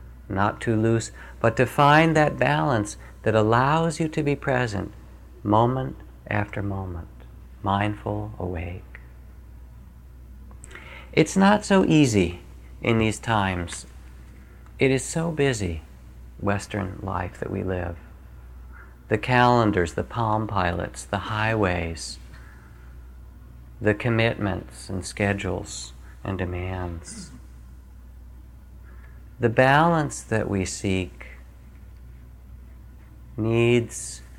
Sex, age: male, 40-59